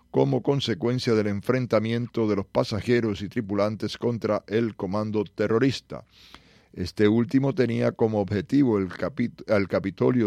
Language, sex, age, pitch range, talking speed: English, male, 40-59, 100-115 Hz, 125 wpm